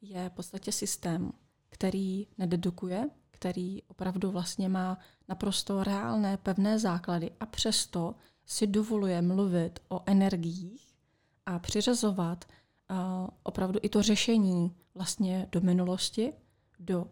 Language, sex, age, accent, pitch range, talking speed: Czech, female, 30-49, native, 180-200 Hz, 110 wpm